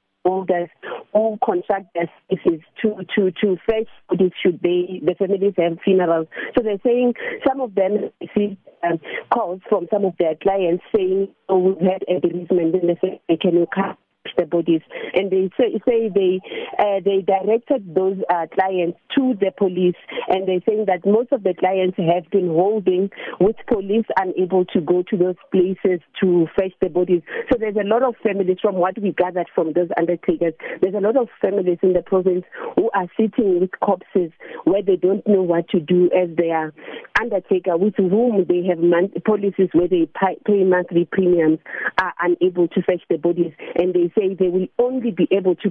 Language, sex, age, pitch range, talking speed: English, female, 40-59, 175-200 Hz, 190 wpm